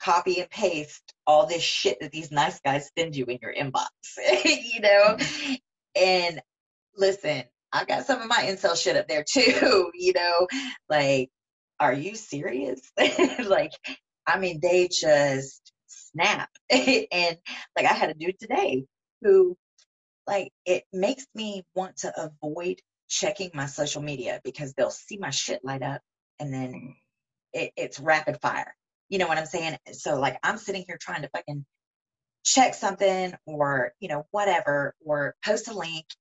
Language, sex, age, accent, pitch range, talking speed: English, female, 30-49, American, 145-195 Hz, 155 wpm